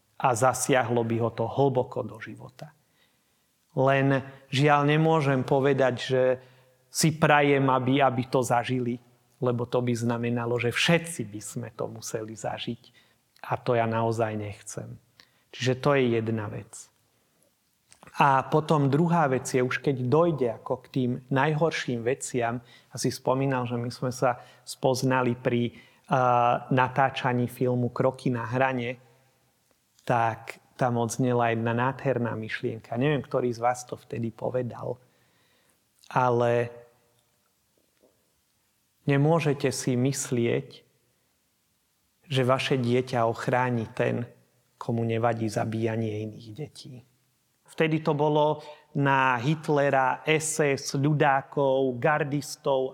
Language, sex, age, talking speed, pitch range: Slovak, male, 30-49, 115 wpm, 120-135 Hz